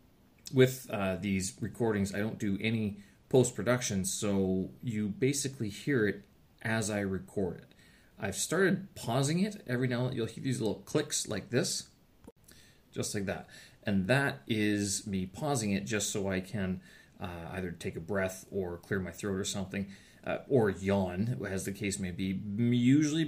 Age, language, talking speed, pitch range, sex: 30-49, English, 170 wpm, 95-120 Hz, male